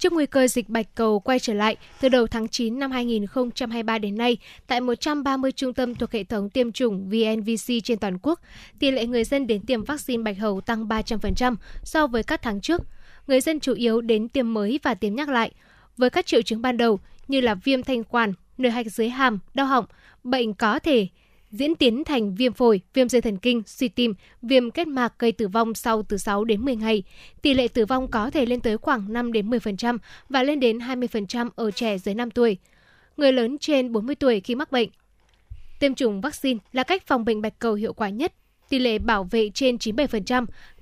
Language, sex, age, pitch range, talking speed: Vietnamese, female, 10-29, 225-260 Hz, 215 wpm